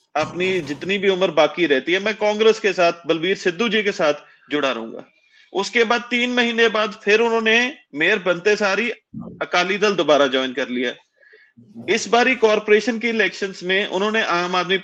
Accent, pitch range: native, 160-215 Hz